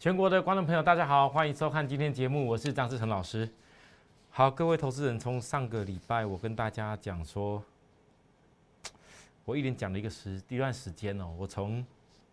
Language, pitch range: Chinese, 100-135 Hz